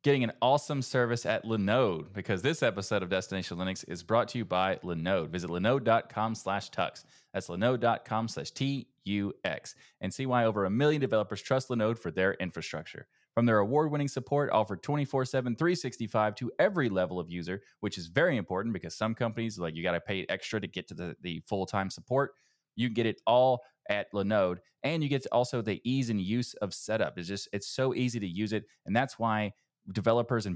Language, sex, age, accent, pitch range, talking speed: English, male, 20-39, American, 100-125 Hz, 190 wpm